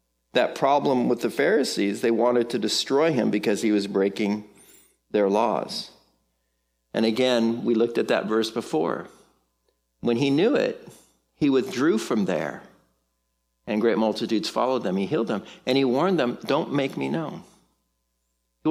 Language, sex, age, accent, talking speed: English, male, 50-69, American, 155 wpm